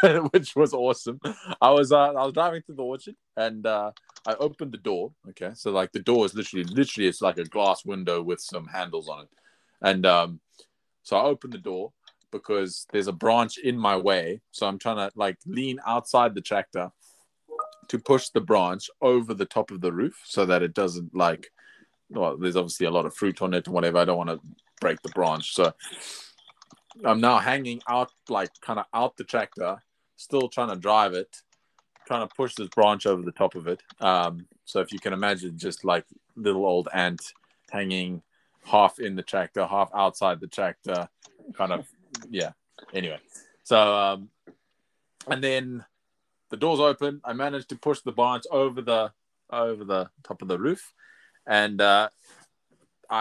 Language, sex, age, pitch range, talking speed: English, male, 20-39, 95-125 Hz, 185 wpm